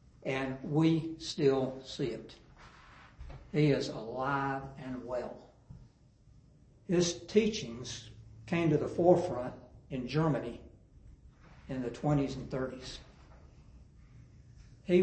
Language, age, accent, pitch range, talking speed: English, 60-79, American, 115-150 Hz, 95 wpm